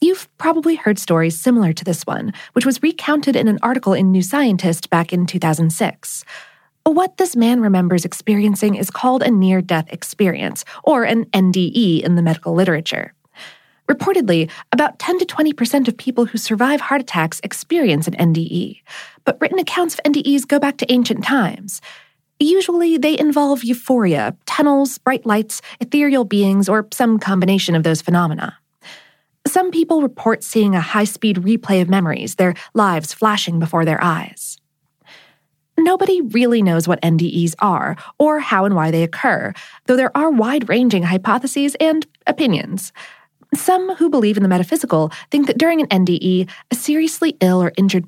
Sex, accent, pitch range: female, American, 180-280 Hz